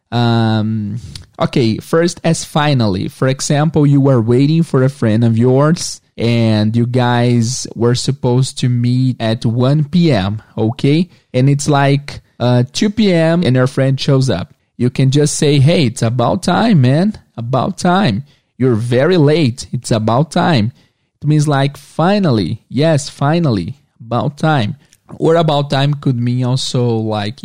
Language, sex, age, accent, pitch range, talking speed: English, male, 20-39, Brazilian, 120-150 Hz, 150 wpm